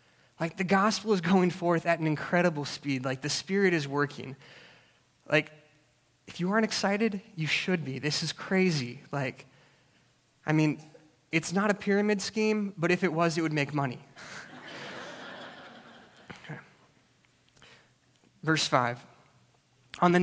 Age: 20-39